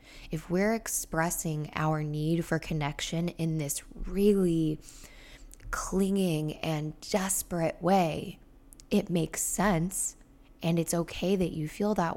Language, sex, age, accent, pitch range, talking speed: English, female, 10-29, American, 155-180 Hz, 120 wpm